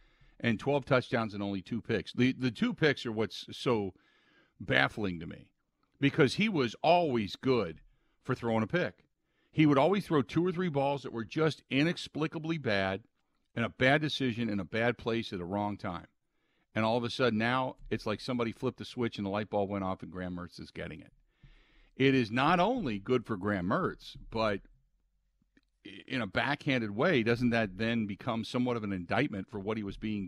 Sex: male